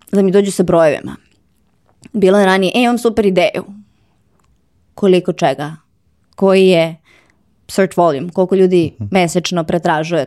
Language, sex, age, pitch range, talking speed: English, female, 20-39, 155-185 Hz, 130 wpm